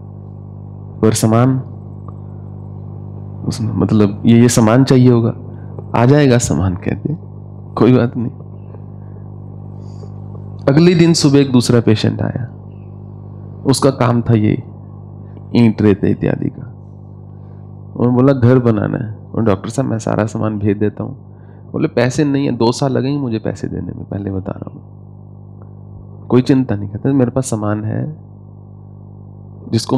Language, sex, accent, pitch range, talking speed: English, male, Indian, 100-125 Hz, 115 wpm